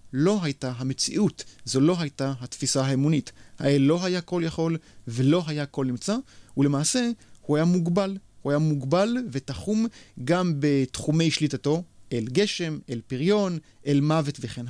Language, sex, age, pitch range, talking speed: Hebrew, male, 30-49, 140-180 Hz, 145 wpm